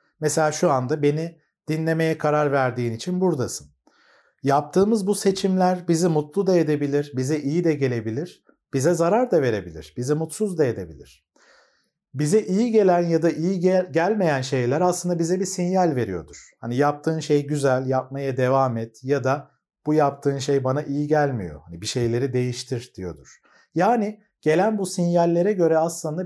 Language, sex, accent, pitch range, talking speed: Turkish, male, native, 135-180 Hz, 155 wpm